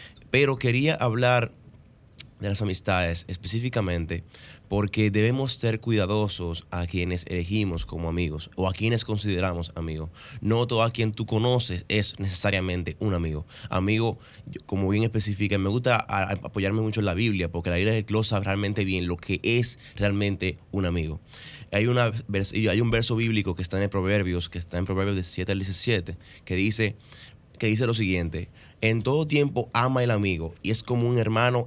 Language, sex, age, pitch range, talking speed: Spanish, male, 20-39, 95-115 Hz, 175 wpm